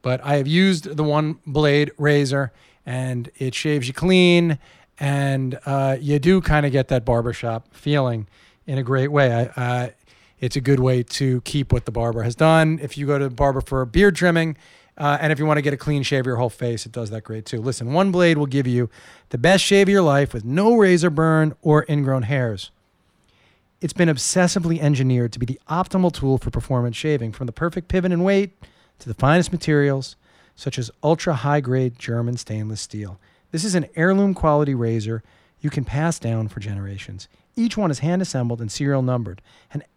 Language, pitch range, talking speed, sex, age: English, 120-155 Hz, 205 wpm, male, 40-59